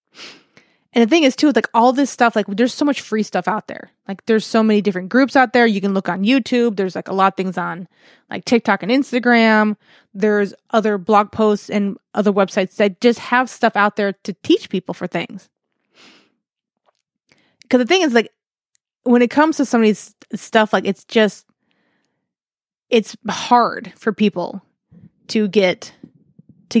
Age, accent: 20-39, American